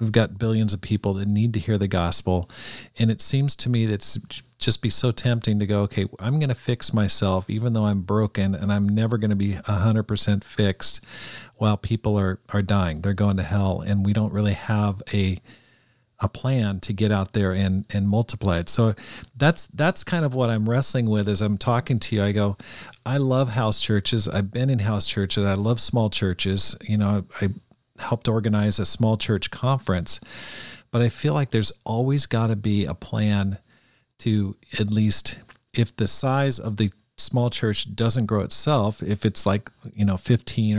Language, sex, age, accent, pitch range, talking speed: English, male, 40-59, American, 100-120 Hz, 200 wpm